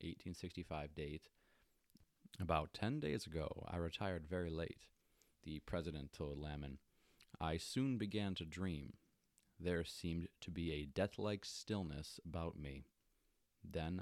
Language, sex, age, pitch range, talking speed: English, male, 30-49, 80-95 Hz, 125 wpm